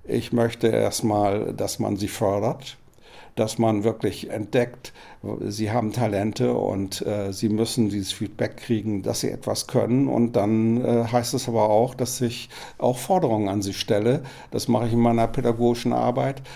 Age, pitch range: 60-79, 110-125 Hz